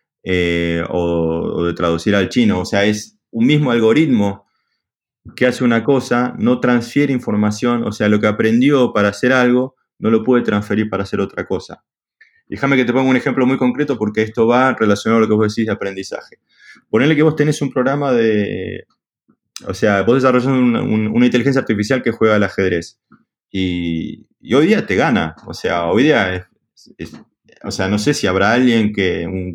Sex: male